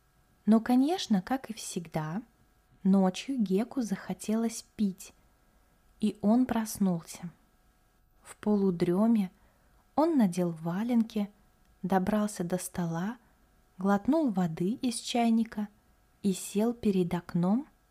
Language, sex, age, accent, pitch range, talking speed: Russian, female, 20-39, native, 185-230 Hz, 95 wpm